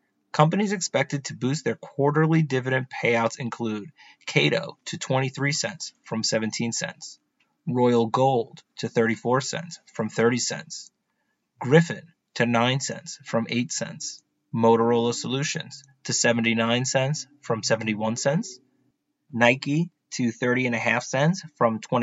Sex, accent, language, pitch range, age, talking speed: male, American, English, 115-150 Hz, 30-49, 130 wpm